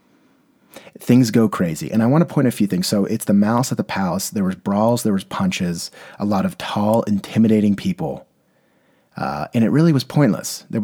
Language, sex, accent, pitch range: English, male, American, 105-170 Hz